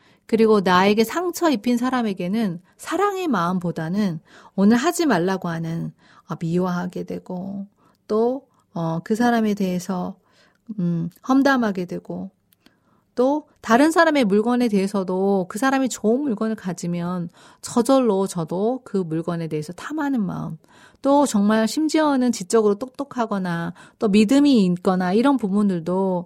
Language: Korean